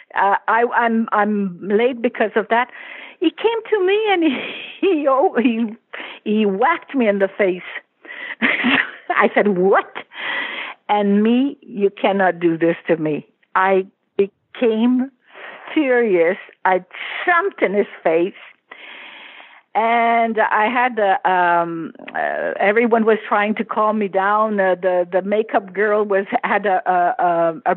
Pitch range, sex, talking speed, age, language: 195-255 Hz, female, 145 wpm, 60-79, English